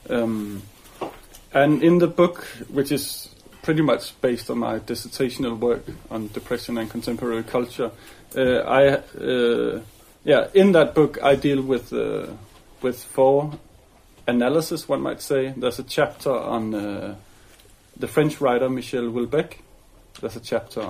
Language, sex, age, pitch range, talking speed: English, male, 30-49, 115-140 Hz, 140 wpm